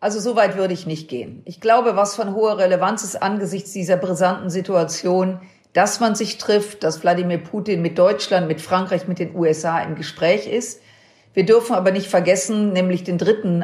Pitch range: 175-215 Hz